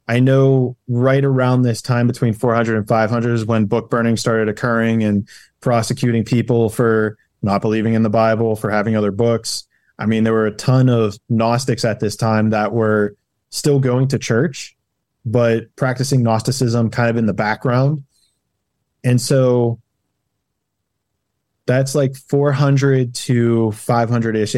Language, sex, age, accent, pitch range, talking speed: English, male, 20-39, American, 110-130 Hz, 150 wpm